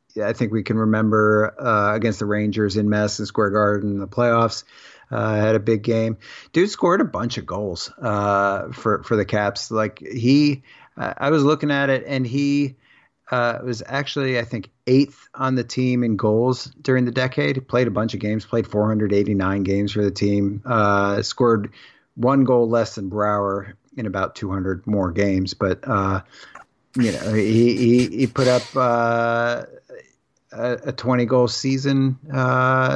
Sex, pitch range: male, 100-125 Hz